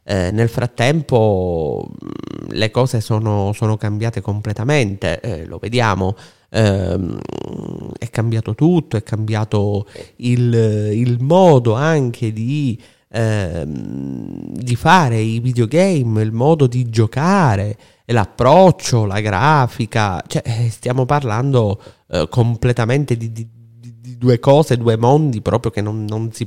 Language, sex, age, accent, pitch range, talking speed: Italian, male, 30-49, native, 110-130 Hz, 115 wpm